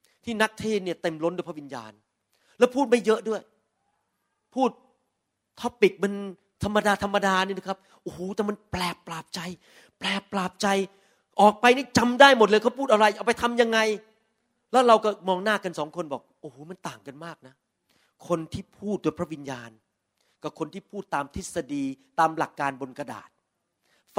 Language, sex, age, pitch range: Thai, male, 30-49, 145-205 Hz